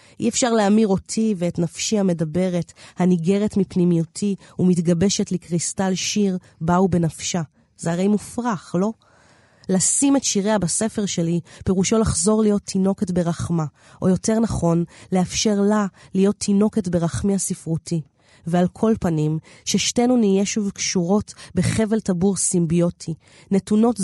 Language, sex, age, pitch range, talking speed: Hebrew, female, 30-49, 170-200 Hz, 120 wpm